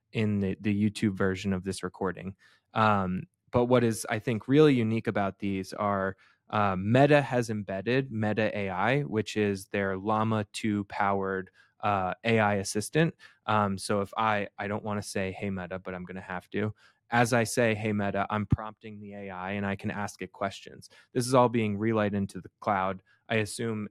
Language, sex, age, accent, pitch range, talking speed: English, male, 20-39, American, 95-115 Hz, 190 wpm